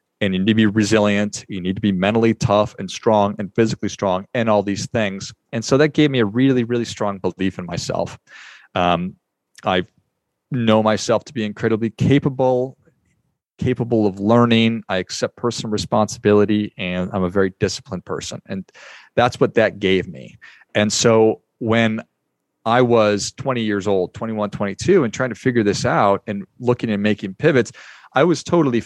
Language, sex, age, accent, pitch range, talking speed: English, male, 40-59, American, 100-120 Hz, 175 wpm